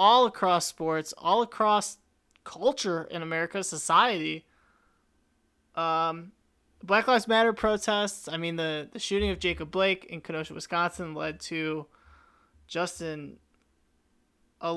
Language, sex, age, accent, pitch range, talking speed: English, male, 20-39, American, 165-200 Hz, 120 wpm